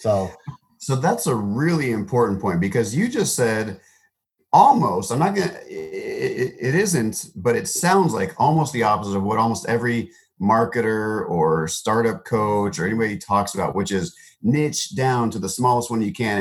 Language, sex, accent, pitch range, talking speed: English, male, American, 100-130 Hz, 175 wpm